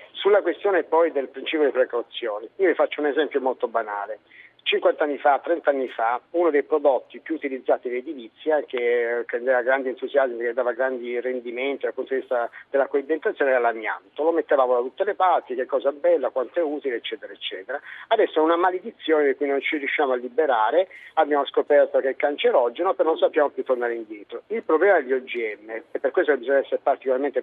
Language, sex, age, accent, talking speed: Italian, male, 50-69, native, 195 wpm